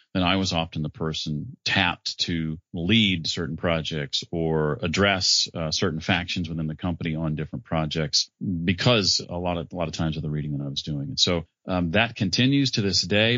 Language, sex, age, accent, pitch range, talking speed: English, male, 40-59, American, 80-100 Hz, 200 wpm